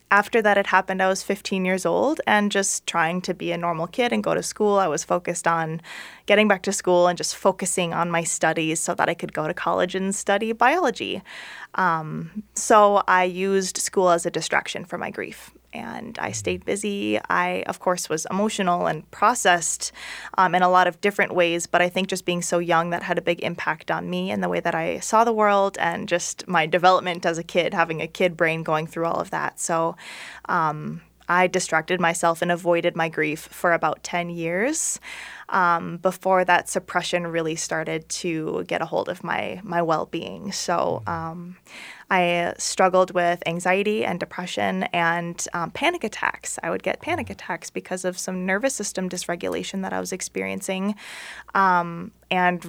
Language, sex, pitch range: English, female, 170-190 Hz